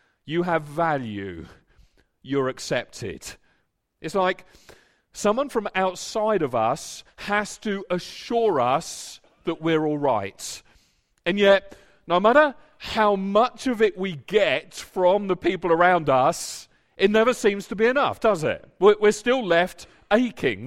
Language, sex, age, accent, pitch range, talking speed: English, male, 40-59, British, 160-210 Hz, 135 wpm